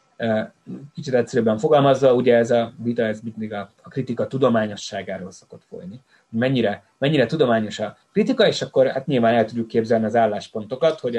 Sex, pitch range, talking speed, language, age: male, 110-130 Hz, 150 wpm, Hungarian, 30-49